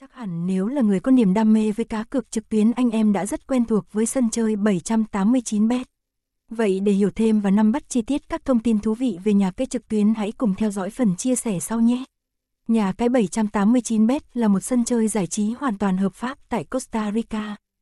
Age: 20-39